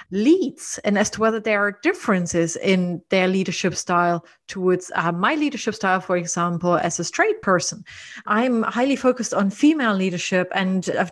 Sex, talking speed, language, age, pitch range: female, 165 wpm, English, 30-49, 185-225 Hz